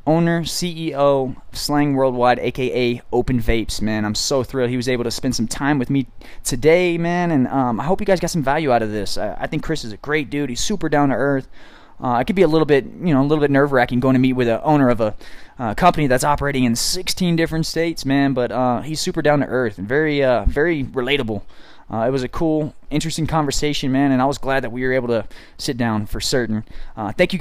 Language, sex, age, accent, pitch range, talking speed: English, male, 20-39, American, 125-160 Hz, 250 wpm